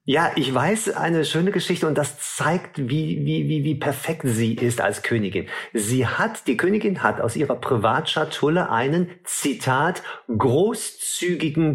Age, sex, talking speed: 50-69, male, 150 wpm